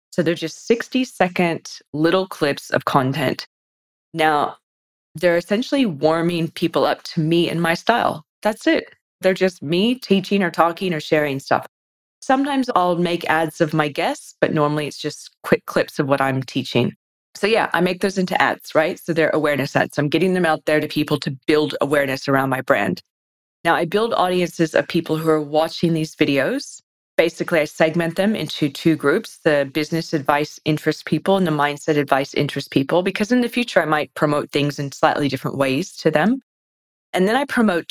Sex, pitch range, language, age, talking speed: female, 145-180 Hz, English, 20-39, 190 wpm